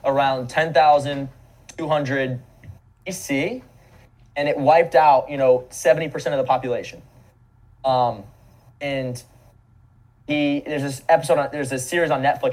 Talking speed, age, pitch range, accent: 120 wpm, 20-39, 120-150 Hz, American